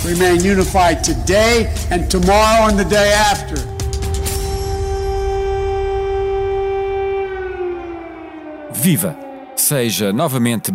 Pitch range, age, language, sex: 100-165 Hz, 50-69, Portuguese, male